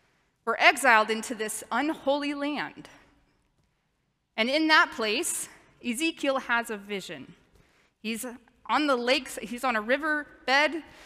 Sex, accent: female, American